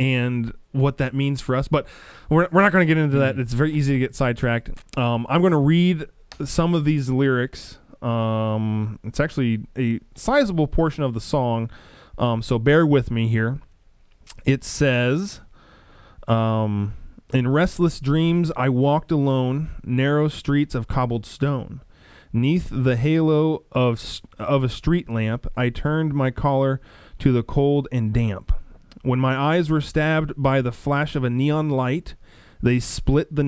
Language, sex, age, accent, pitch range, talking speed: English, male, 20-39, American, 115-150 Hz, 160 wpm